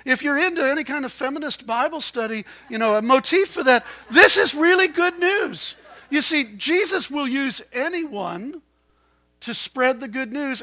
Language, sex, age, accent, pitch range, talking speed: English, male, 50-69, American, 195-280 Hz, 175 wpm